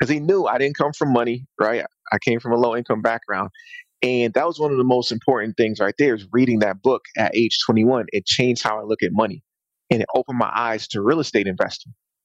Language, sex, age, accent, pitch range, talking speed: English, male, 30-49, American, 115-135 Hz, 240 wpm